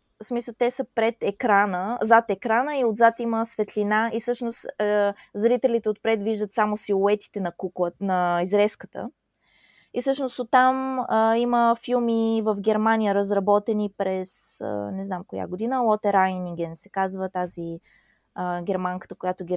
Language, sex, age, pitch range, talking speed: Bulgarian, female, 20-39, 195-245 Hz, 145 wpm